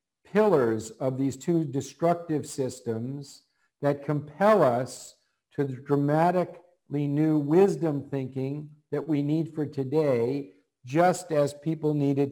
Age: 50-69